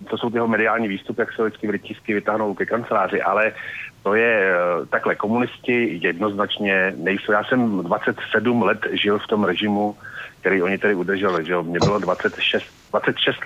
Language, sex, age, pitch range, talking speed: Slovak, male, 40-59, 105-125 Hz, 165 wpm